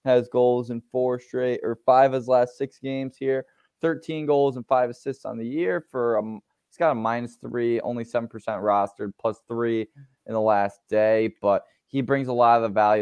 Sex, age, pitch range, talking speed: male, 20-39, 105-125 Hz, 210 wpm